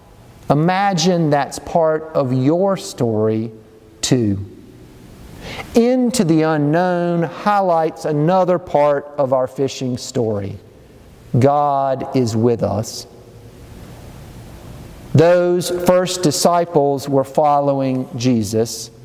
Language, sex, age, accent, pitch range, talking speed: English, male, 50-69, American, 125-175 Hz, 85 wpm